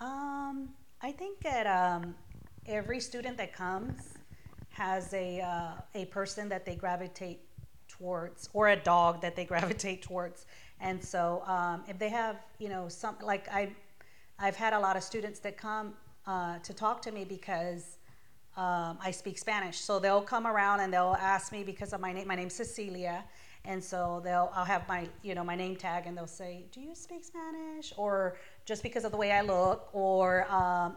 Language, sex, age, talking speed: English, female, 40-59, 190 wpm